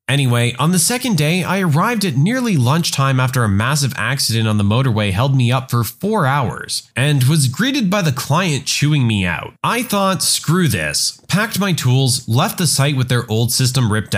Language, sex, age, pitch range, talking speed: English, male, 20-39, 120-165 Hz, 200 wpm